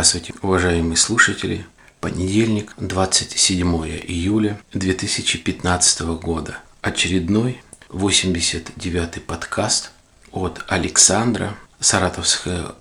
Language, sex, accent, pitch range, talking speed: Russian, male, native, 85-100 Hz, 65 wpm